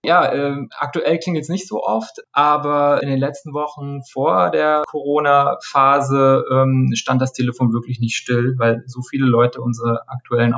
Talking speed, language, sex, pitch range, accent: 165 wpm, German, male, 125-140 Hz, German